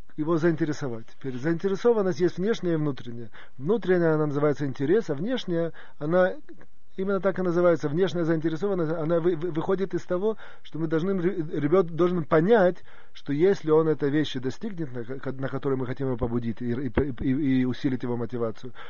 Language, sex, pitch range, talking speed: Russian, male, 130-175 Hz, 145 wpm